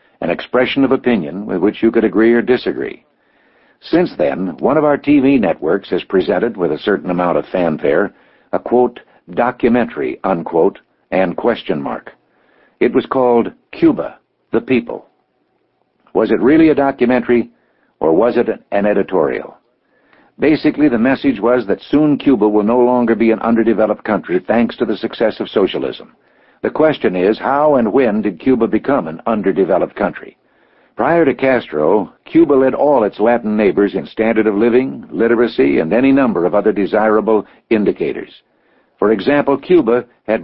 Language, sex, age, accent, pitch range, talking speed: English, male, 60-79, American, 110-130 Hz, 155 wpm